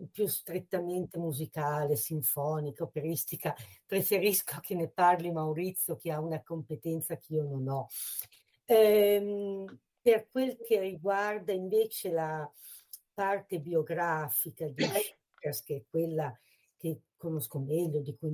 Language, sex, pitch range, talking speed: Italian, female, 155-185 Hz, 120 wpm